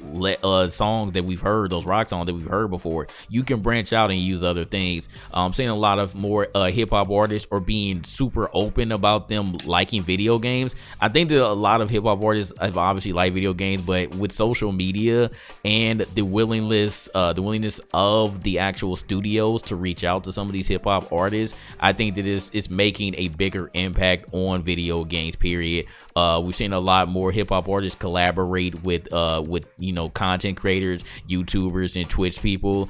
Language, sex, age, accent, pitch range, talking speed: English, male, 20-39, American, 90-105 Hz, 200 wpm